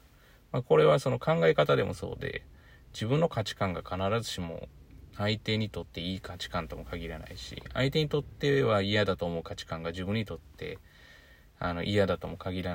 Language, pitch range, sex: Japanese, 90-115 Hz, male